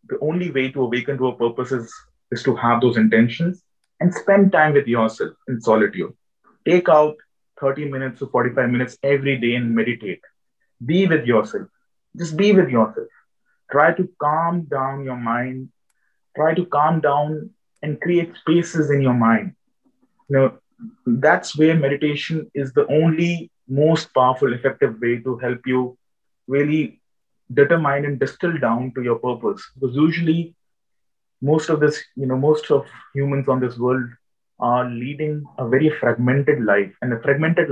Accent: Indian